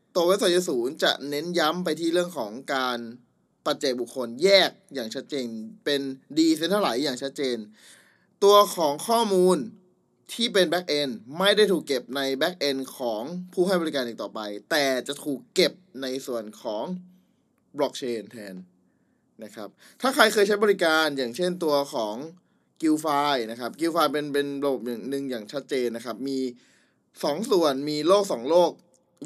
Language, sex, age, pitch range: Thai, male, 20-39, 130-180 Hz